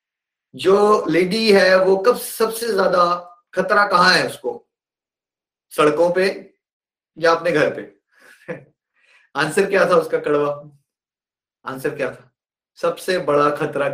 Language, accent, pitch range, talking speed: Hindi, native, 155-210 Hz, 120 wpm